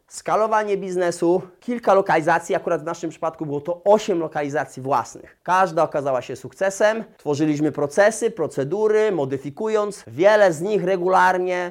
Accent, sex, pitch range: native, male, 160-200 Hz